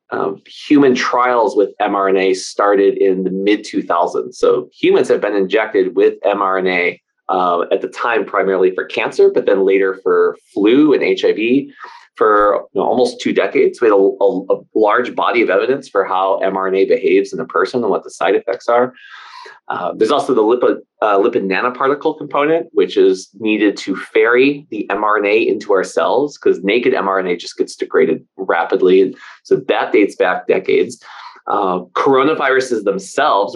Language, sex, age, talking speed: English, male, 30-49, 170 wpm